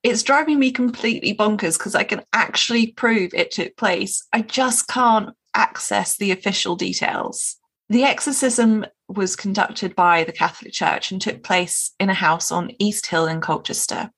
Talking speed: 165 wpm